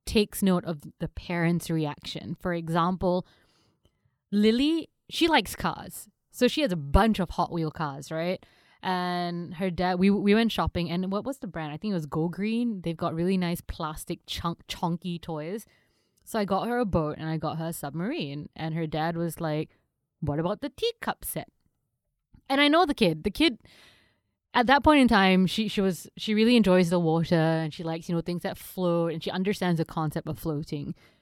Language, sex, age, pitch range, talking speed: English, female, 20-39, 165-220 Hz, 200 wpm